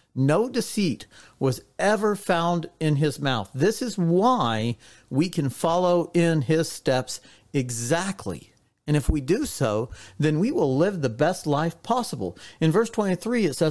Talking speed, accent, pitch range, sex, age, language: 150 wpm, American, 120-175 Hz, male, 50-69, English